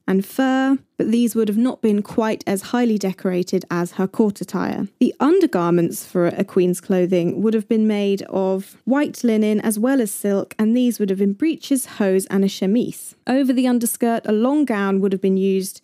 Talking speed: 200 wpm